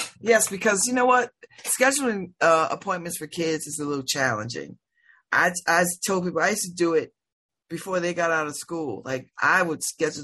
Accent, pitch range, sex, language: American, 155-195 Hz, female, English